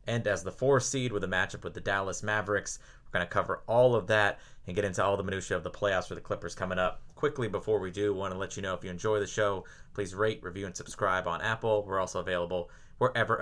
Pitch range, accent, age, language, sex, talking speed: 100-120 Hz, American, 30-49, English, male, 265 wpm